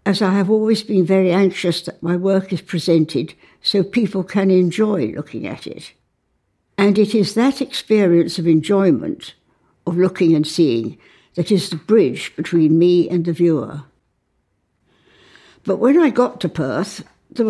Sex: female